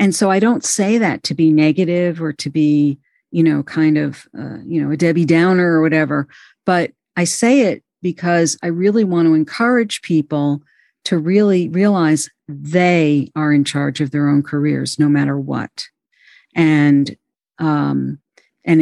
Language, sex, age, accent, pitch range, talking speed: English, female, 50-69, American, 150-185 Hz, 165 wpm